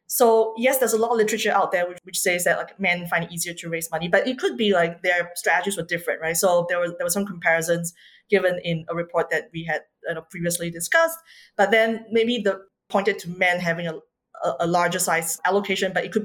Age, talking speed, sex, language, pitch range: 20-39, 245 wpm, female, English, 170-225 Hz